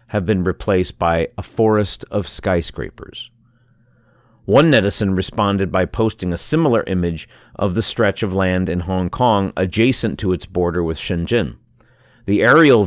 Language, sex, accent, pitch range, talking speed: English, male, American, 90-120 Hz, 150 wpm